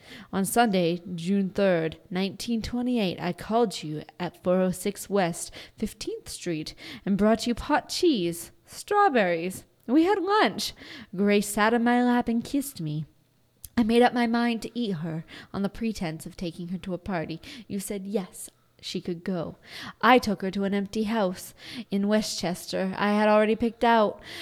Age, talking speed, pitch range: 20-39, 165 wpm, 180-220 Hz